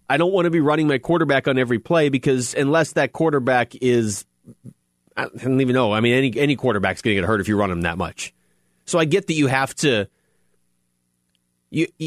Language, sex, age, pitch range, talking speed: English, male, 30-49, 100-155 Hz, 215 wpm